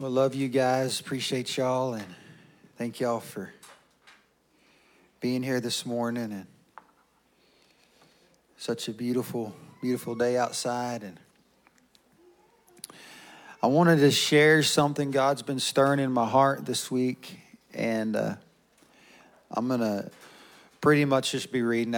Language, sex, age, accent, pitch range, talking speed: English, male, 40-59, American, 110-130 Hz, 125 wpm